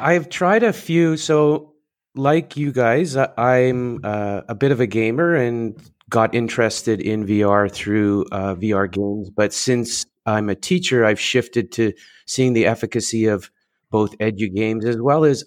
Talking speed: 160 wpm